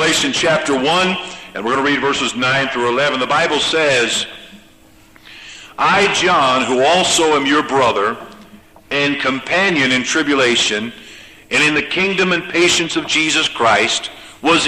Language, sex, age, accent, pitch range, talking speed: English, male, 50-69, American, 130-155 Hz, 145 wpm